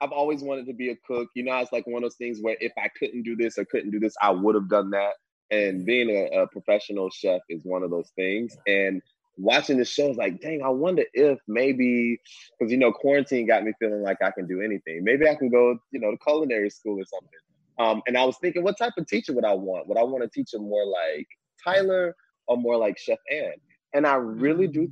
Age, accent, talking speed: 20-39, American, 250 wpm